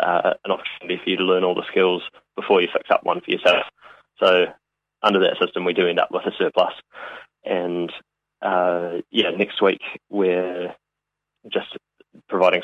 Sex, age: male, 20-39